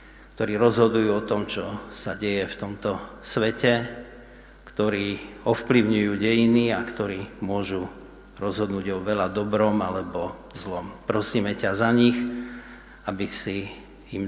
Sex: male